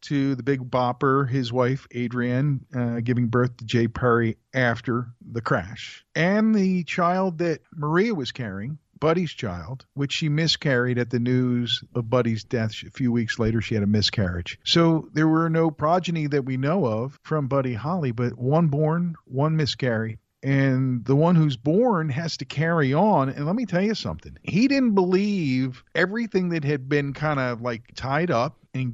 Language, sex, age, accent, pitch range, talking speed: English, male, 50-69, American, 120-160 Hz, 180 wpm